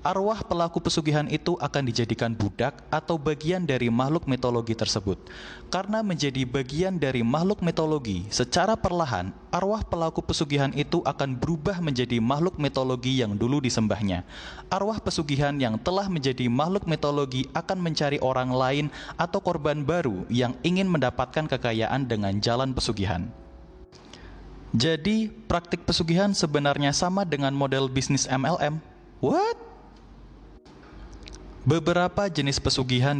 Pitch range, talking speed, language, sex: 120-170 Hz, 120 wpm, Indonesian, male